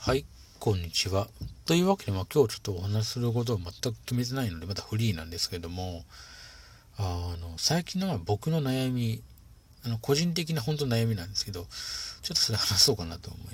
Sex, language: male, Japanese